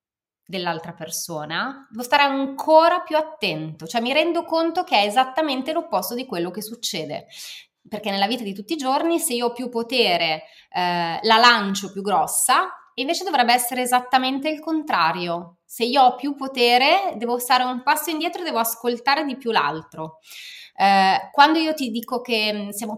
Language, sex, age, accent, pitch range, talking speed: Italian, female, 20-39, native, 185-260 Hz, 165 wpm